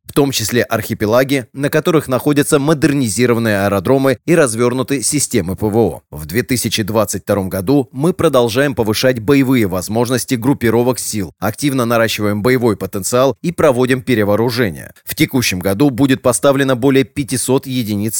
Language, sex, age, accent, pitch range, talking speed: Russian, male, 30-49, native, 110-140 Hz, 125 wpm